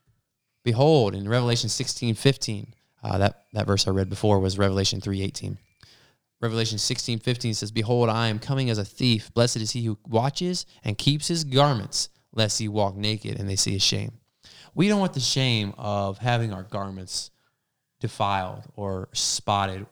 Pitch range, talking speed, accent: 100-130 Hz, 165 wpm, American